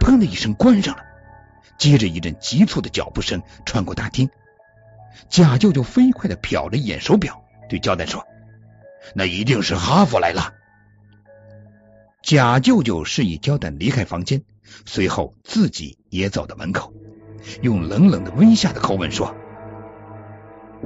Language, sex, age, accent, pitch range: Chinese, male, 50-69, native, 95-125 Hz